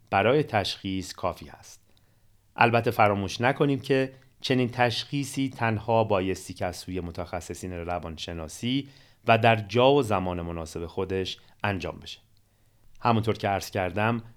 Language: Persian